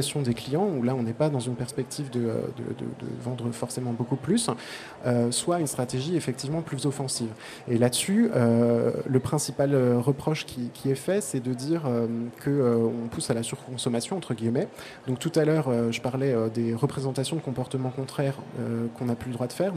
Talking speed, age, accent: 205 wpm, 20-39, French